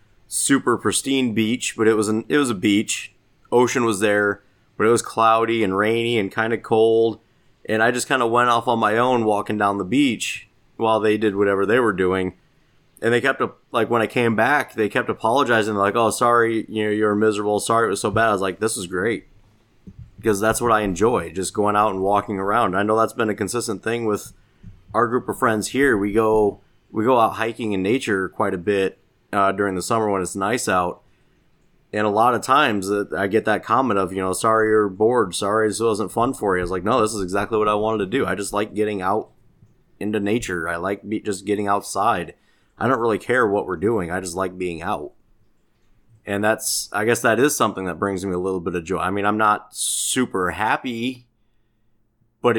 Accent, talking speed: American, 225 wpm